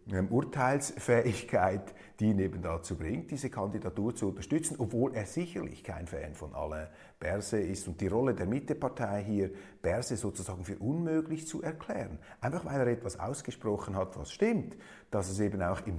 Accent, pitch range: Austrian, 95-125 Hz